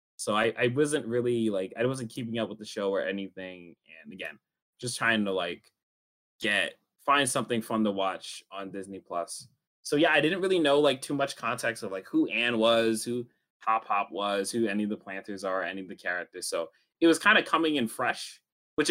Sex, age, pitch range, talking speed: male, 20-39, 100-125 Hz, 215 wpm